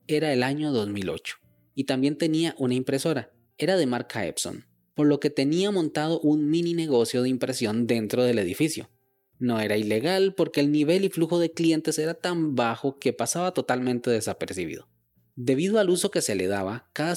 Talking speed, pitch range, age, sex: 180 wpm, 115-155 Hz, 20-39, male